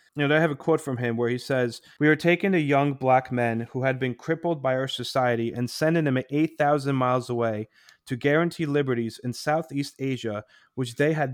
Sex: male